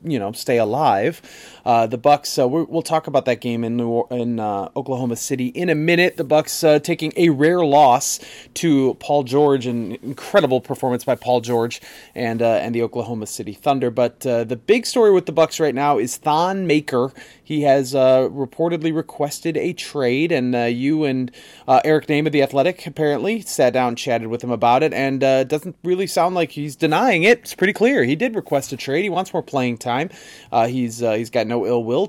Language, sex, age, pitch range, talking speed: English, male, 30-49, 125-160 Hz, 215 wpm